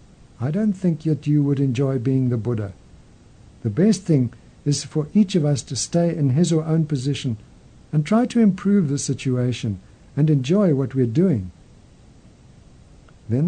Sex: male